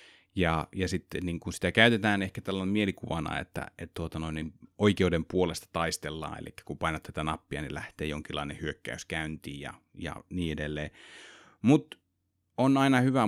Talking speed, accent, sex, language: 165 wpm, native, male, Finnish